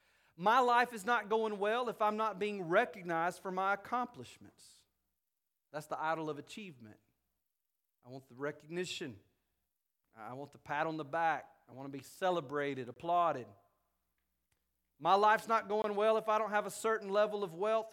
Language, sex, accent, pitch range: English, male, American, 125-210 Hz